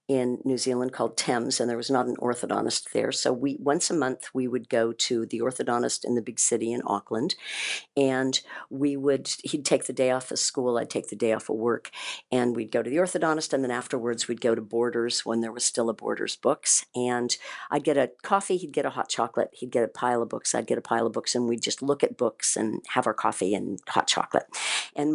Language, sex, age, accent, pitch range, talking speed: English, female, 50-69, American, 120-140 Hz, 245 wpm